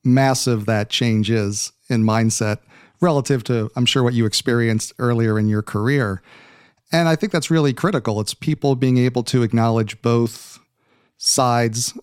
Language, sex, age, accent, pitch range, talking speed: English, male, 40-59, American, 115-135 Hz, 155 wpm